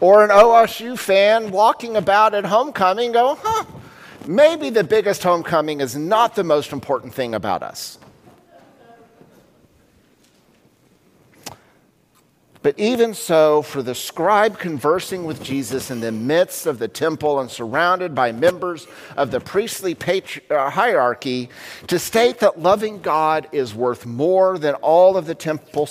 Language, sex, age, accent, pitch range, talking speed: English, male, 50-69, American, 135-205 Hz, 135 wpm